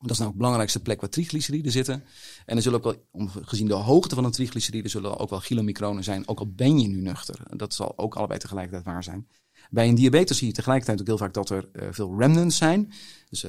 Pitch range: 105-140 Hz